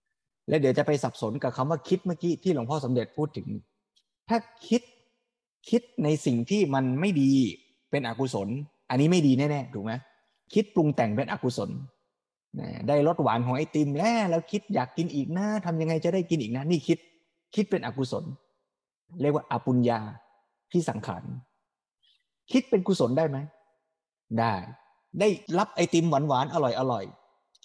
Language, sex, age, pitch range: Thai, male, 20-39, 135-190 Hz